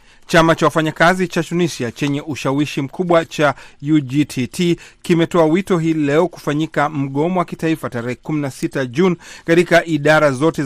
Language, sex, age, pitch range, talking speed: Swahili, male, 40-59, 125-160 Hz, 135 wpm